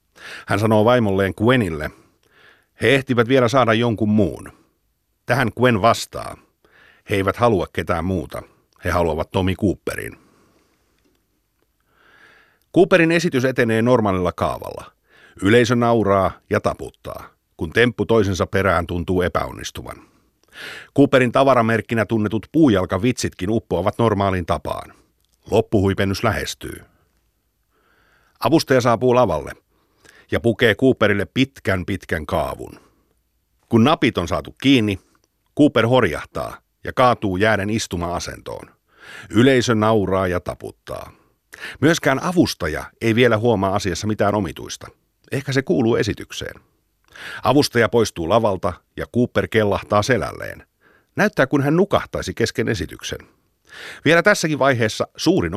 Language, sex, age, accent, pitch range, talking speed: Finnish, male, 50-69, native, 95-125 Hz, 105 wpm